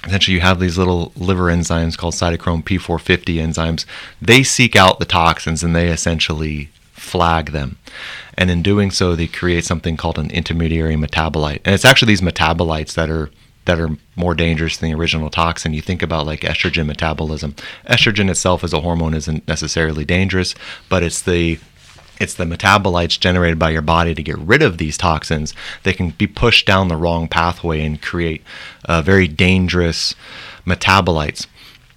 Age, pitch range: 30-49, 80-95 Hz